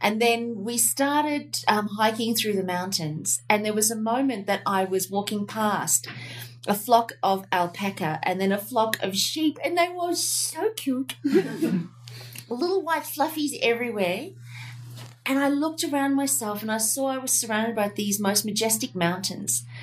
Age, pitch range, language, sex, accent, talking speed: 30-49, 170-225 Hz, English, female, Australian, 165 wpm